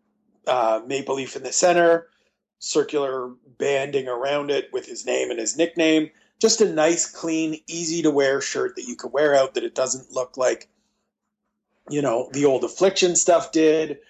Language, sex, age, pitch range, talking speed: English, male, 30-49, 130-165 Hz, 165 wpm